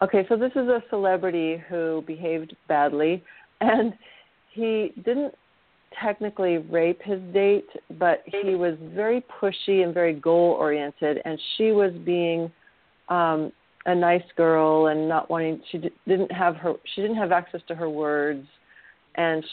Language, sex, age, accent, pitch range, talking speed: English, female, 40-59, American, 160-195 Hz, 145 wpm